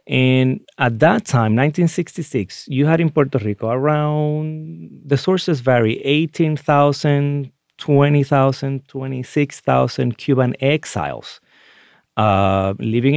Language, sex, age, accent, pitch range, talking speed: English, male, 30-49, Mexican, 110-145 Hz, 95 wpm